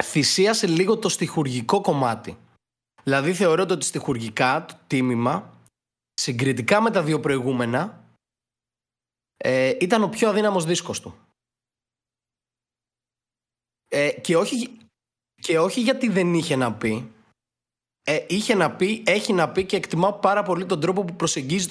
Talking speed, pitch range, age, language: 120 wpm, 135-185 Hz, 20-39, Greek